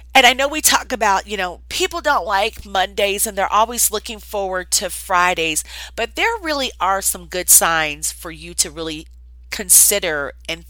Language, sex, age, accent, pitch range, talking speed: English, female, 40-59, American, 160-230 Hz, 180 wpm